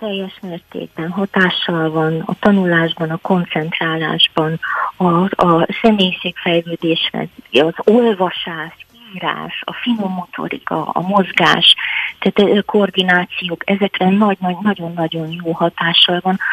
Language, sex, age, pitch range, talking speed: Hungarian, female, 30-49, 170-205 Hz, 100 wpm